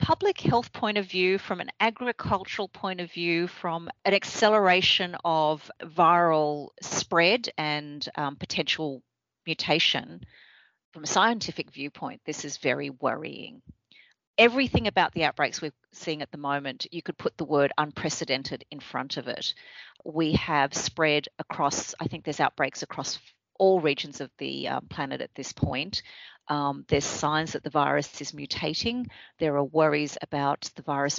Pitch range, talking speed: 145-180 Hz, 150 wpm